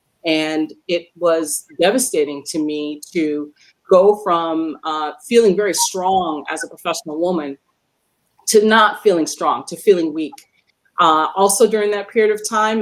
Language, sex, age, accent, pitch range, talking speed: English, female, 30-49, American, 165-210 Hz, 145 wpm